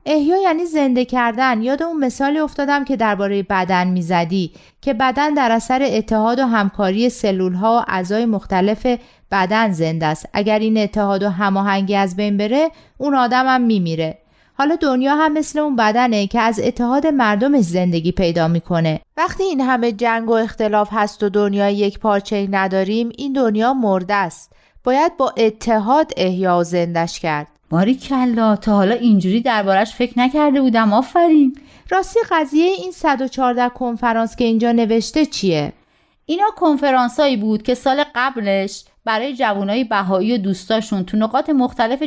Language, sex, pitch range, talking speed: Persian, female, 200-275 Hz, 155 wpm